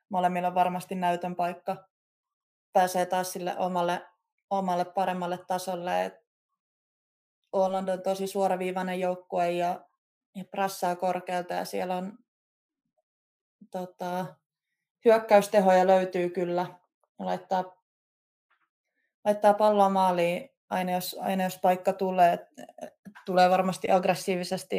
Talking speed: 95 wpm